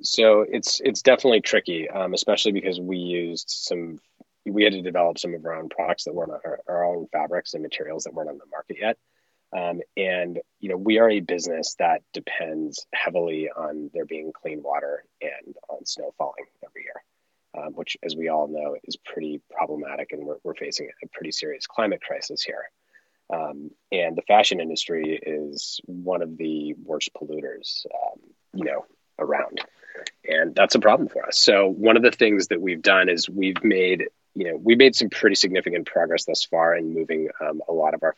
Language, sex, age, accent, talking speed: English, male, 30-49, American, 195 wpm